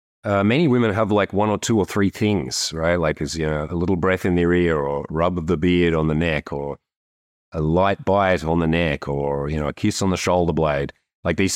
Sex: male